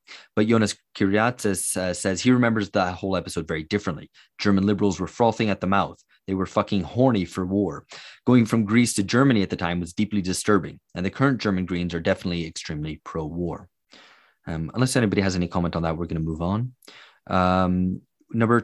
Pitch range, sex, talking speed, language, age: 90-115 Hz, male, 195 wpm, English, 20-39